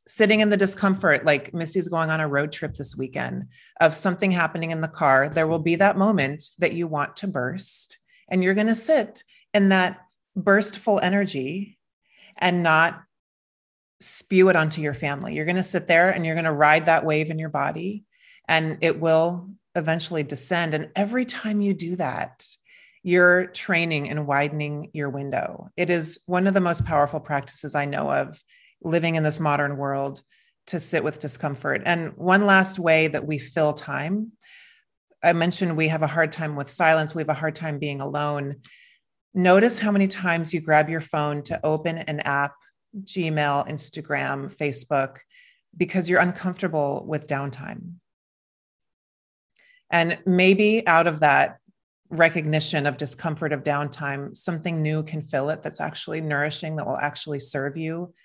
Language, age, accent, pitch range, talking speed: English, 30-49, American, 150-185 Hz, 170 wpm